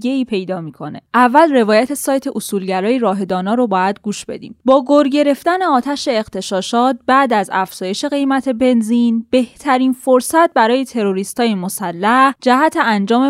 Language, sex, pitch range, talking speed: Persian, female, 210-275 Hz, 130 wpm